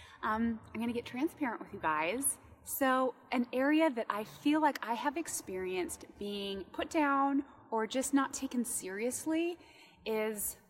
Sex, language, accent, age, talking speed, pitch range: female, English, American, 30-49, 150 wpm, 200-280 Hz